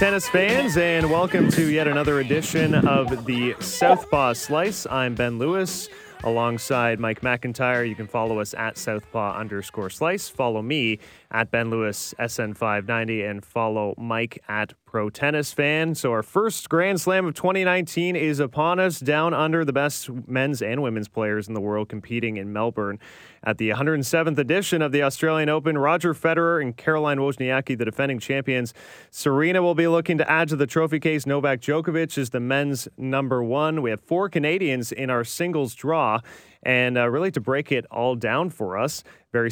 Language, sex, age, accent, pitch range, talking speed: English, male, 20-39, American, 120-155 Hz, 175 wpm